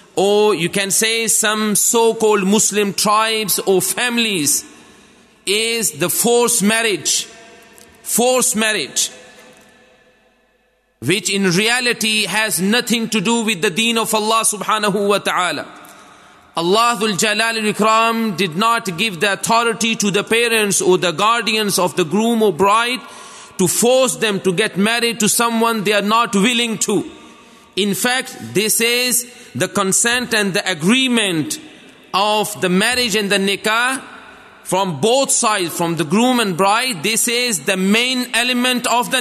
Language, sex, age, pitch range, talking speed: English, male, 40-59, 210-245 Hz, 140 wpm